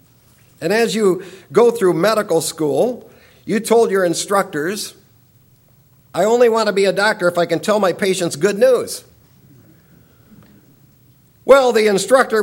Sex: male